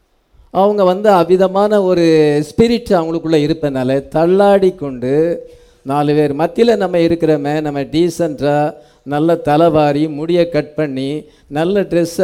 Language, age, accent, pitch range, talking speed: English, 50-69, Indian, 145-200 Hz, 115 wpm